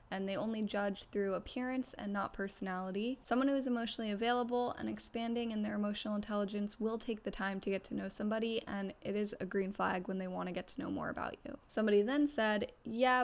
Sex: female